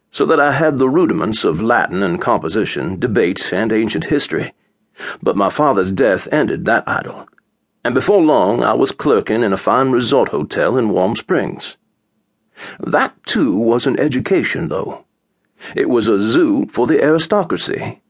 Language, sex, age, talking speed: English, male, 50-69, 160 wpm